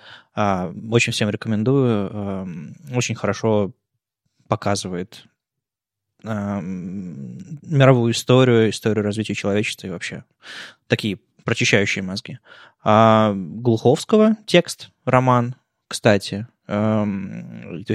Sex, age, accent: male, 20-39, native